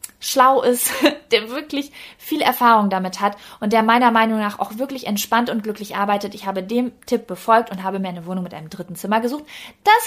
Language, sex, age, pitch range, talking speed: German, female, 20-39, 200-275 Hz, 210 wpm